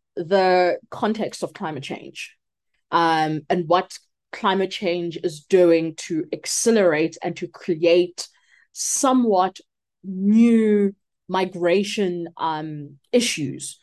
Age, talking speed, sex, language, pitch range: 20-39, 95 wpm, female, English, 170-210 Hz